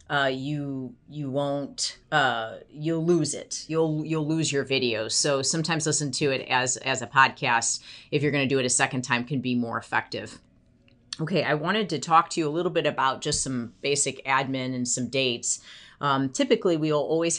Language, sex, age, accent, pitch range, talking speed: English, female, 30-49, American, 125-150 Hz, 200 wpm